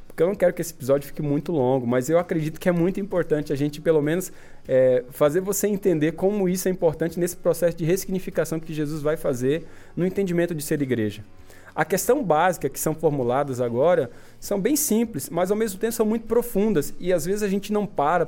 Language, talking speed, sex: Portuguese, 215 wpm, male